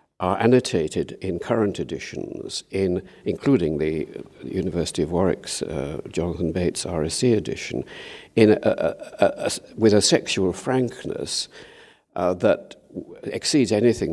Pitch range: 85-120 Hz